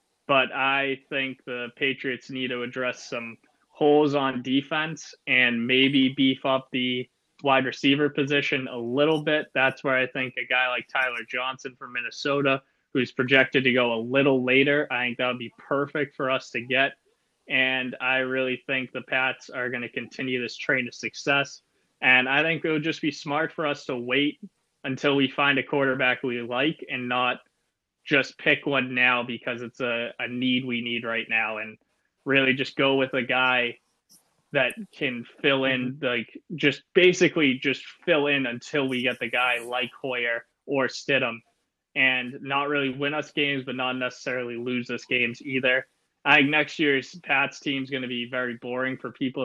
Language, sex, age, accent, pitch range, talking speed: English, male, 20-39, American, 125-140 Hz, 185 wpm